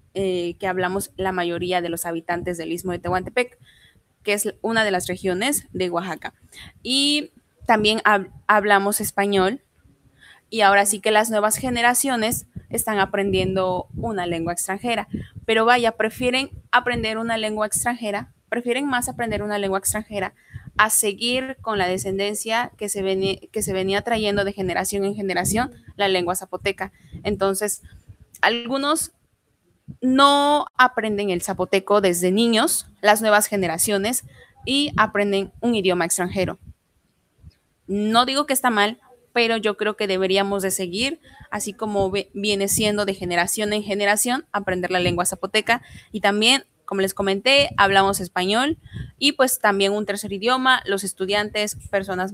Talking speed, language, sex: 145 wpm, Spanish, female